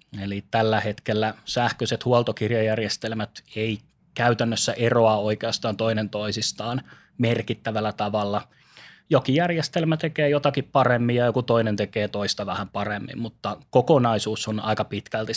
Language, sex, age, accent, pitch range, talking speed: Finnish, male, 20-39, native, 110-130 Hz, 115 wpm